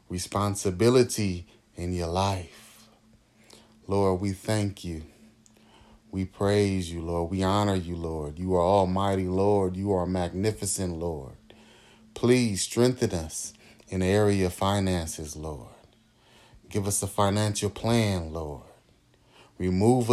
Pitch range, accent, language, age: 90-110 Hz, American, English, 30-49